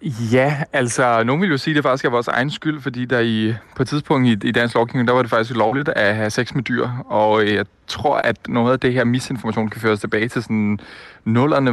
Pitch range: 110-135 Hz